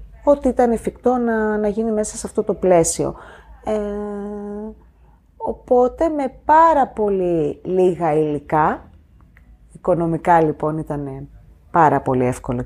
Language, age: Greek, 30-49